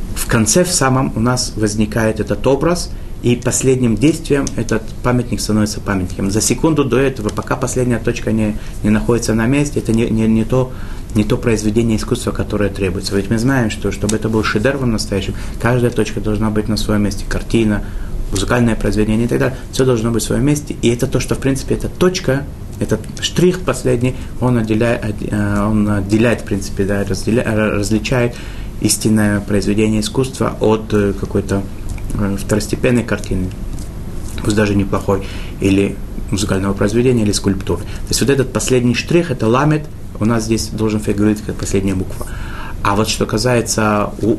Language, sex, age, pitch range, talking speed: Russian, male, 30-49, 100-120 Hz, 165 wpm